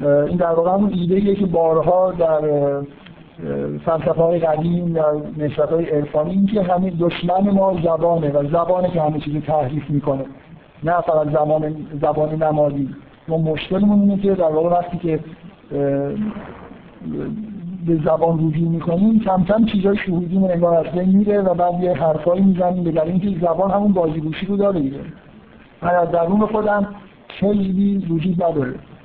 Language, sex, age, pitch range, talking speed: Persian, male, 50-69, 155-185 Hz, 145 wpm